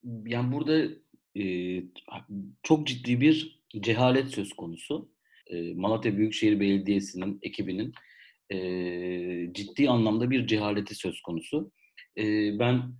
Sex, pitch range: male, 105-130 Hz